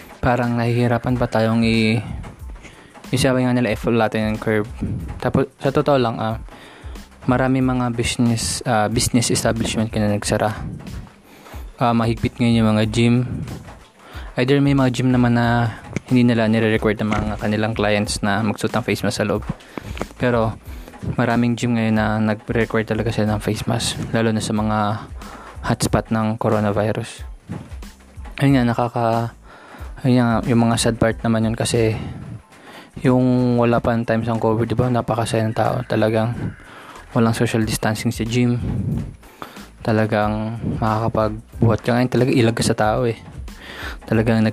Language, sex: Filipino, male